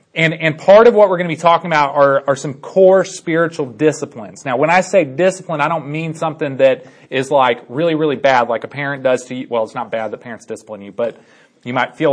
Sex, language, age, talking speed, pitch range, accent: male, English, 30-49, 245 wpm, 140-185 Hz, American